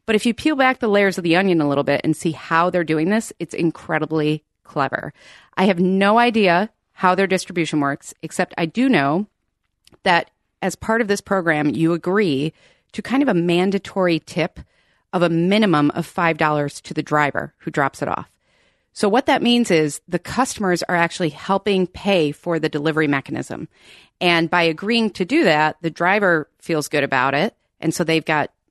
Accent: American